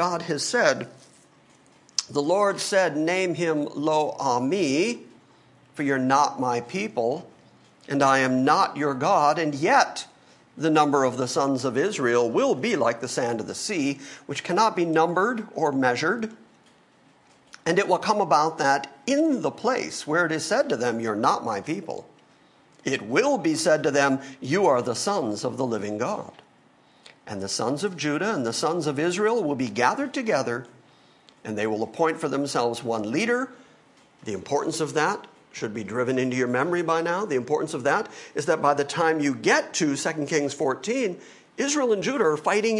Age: 50-69